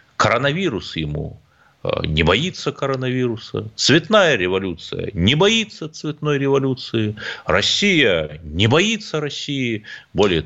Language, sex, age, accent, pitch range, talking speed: Russian, male, 30-49, native, 95-140 Hz, 90 wpm